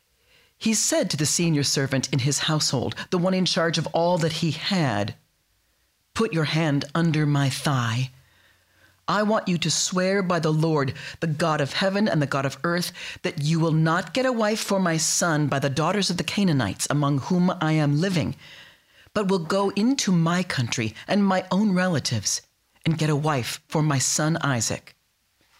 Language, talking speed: English, 190 wpm